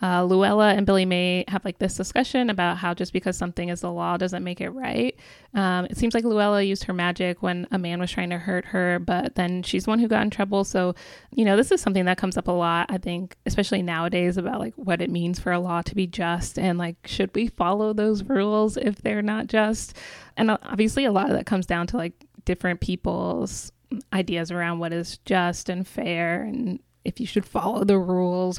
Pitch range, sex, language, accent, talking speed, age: 180-210 Hz, female, English, American, 225 wpm, 20-39